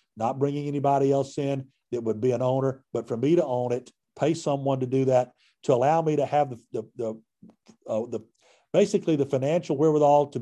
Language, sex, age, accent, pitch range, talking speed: English, male, 50-69, American, 125-160 Hz, 205 wpm